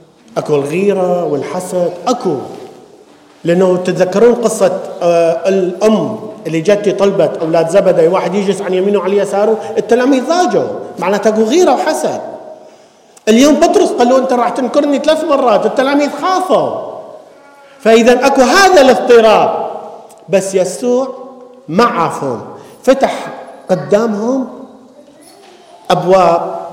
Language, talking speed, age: English, 100 wpm, 50-69